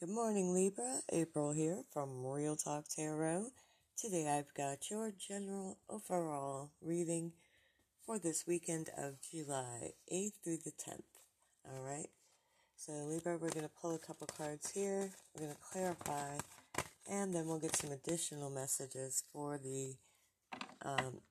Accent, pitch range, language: American, 145-180 Hz, English